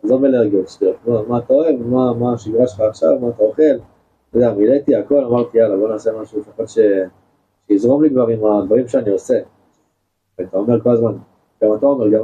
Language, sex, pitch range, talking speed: Hebrew, male, 110-150 Hz, 180 wpm